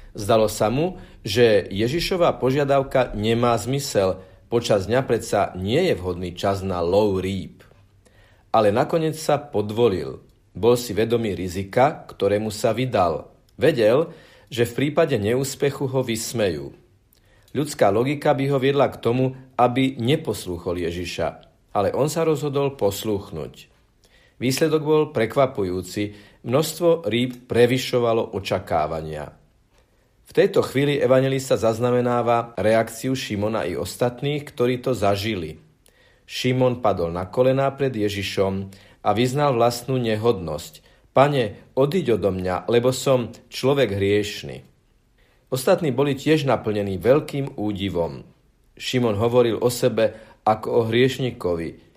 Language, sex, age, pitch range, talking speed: Slovak, male, 50-69, 100-135 Hz, 115 wpm